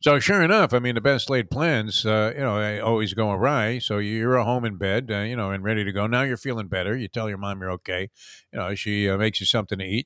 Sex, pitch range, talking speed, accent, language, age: male, 110-145 Hz, 285 wpm, American, English, 50-69